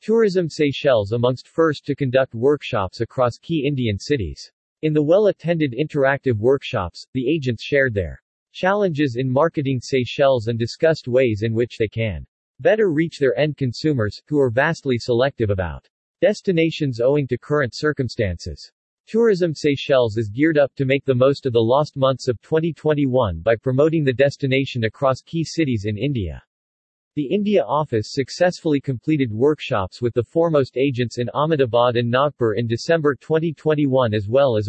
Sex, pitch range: male, 120-150 Hz